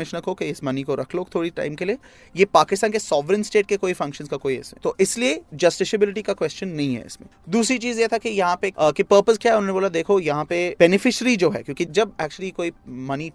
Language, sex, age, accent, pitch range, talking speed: Hindi, male, 20-39, native, 155-205 Hz, 245 wpm